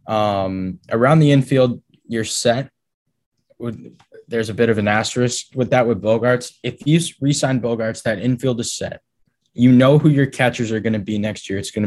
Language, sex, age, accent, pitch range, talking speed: English, male, 10-29, American, 110-130 Hz, 190 wpm